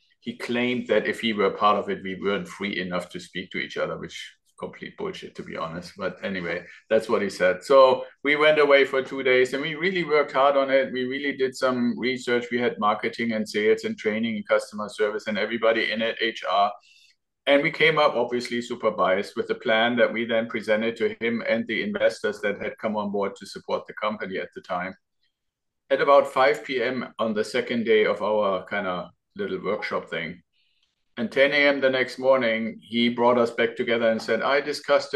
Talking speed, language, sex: 215 wpm, English, male